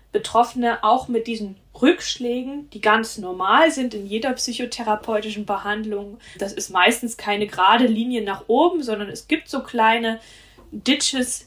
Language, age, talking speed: German, 10-29, 140 wpm